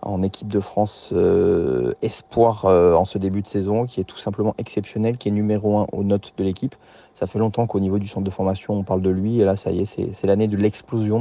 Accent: French